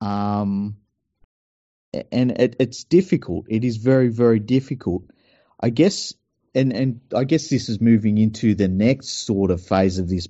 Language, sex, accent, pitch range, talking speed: English, male, Australian, 100-115 Hz, 155 wpm